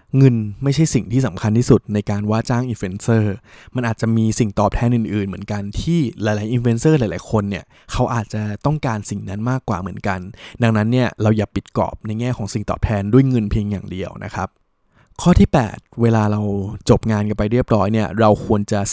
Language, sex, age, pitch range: Thai, male, 20-39, 105-125 Hz